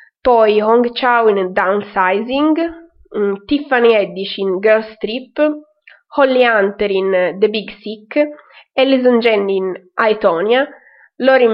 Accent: native